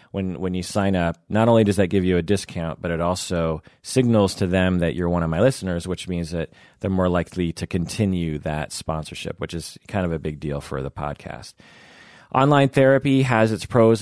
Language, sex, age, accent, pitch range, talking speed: English, male, 30-49, American, 85-105 Hz, 215 wpm